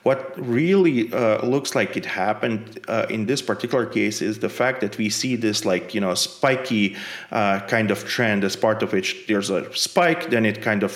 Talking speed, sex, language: 210 wpm, male, English